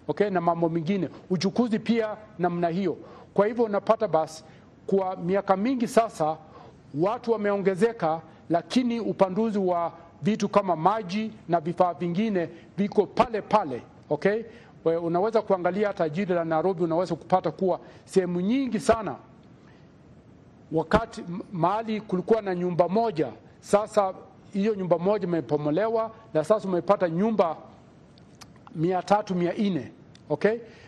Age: 40-59